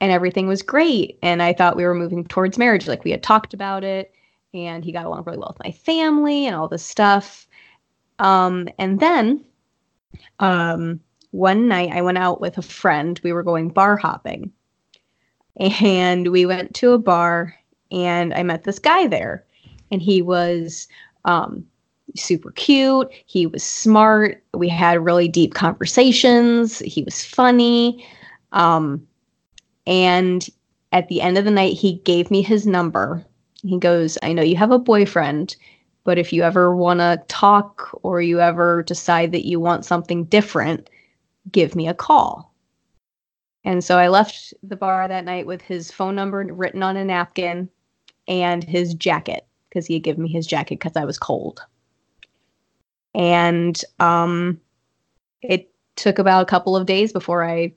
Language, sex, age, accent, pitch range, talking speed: English, female, 20-39, American, 175-200 Hz, 165 wpm